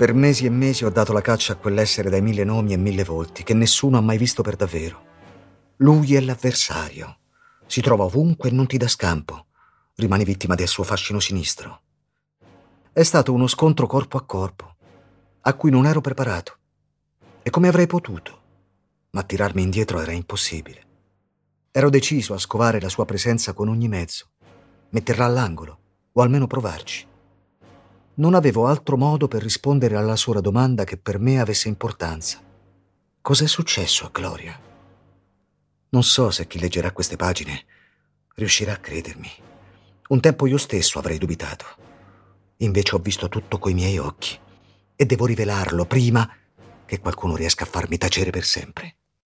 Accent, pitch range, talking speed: native, 95-130 Hz, 155 wpm